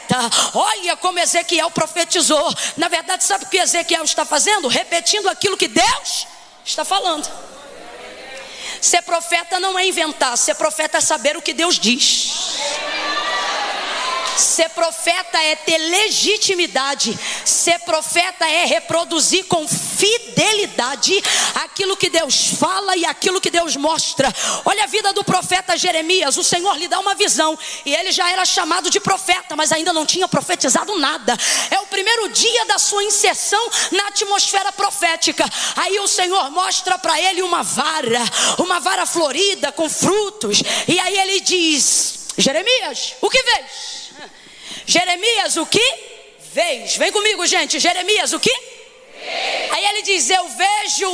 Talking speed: 145 wpm